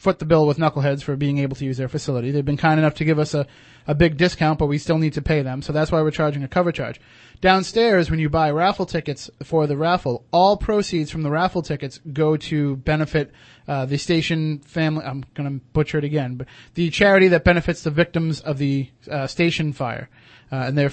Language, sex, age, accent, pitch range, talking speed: English, male, 30-49, American, 140-170 Hz, 230 wpm